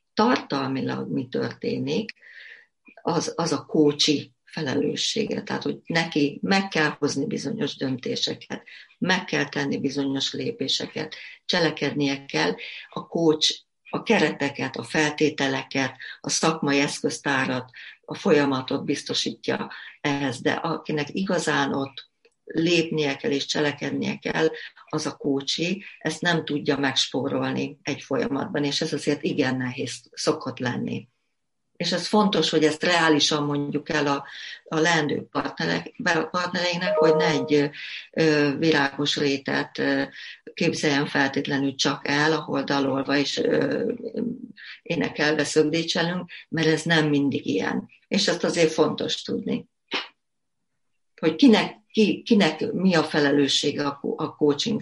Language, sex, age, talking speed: Hungarian, female, 60-79, 120 wpm